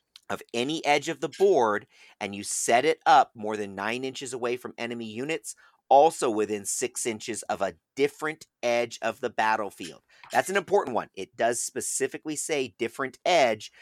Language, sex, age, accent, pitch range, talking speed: English, male, 40-59, American, 100-135 Hz, 175 wpm